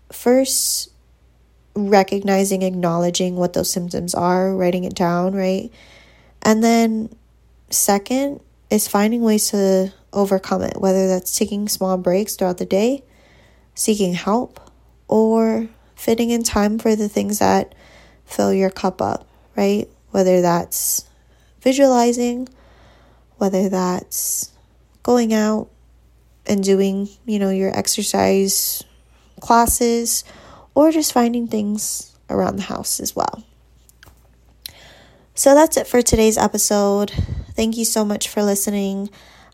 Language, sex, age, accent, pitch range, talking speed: English, female, 10-29, American, 180-225 Hz, 120 wpm